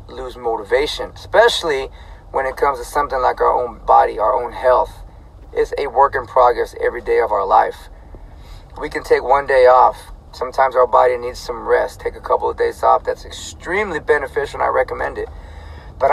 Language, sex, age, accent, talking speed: English, male, 30-49, American, 190 wpm